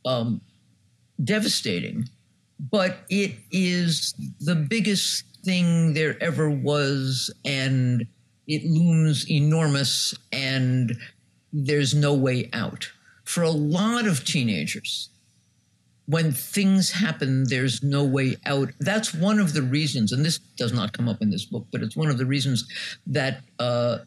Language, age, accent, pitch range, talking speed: English, 50-69, American, 120-160 Hz, 135 wpm